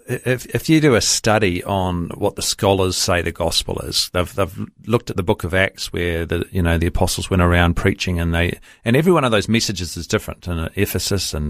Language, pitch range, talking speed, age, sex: English, 90-110 Hz, 240 wpm, 40-59, male